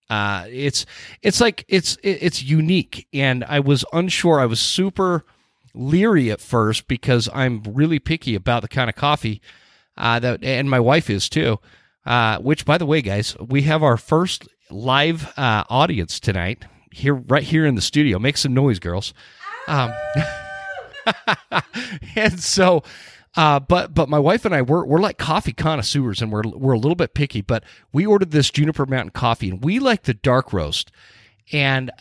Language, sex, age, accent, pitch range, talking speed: English, male, 40-59, American, 115-160 Hz, 175 wpm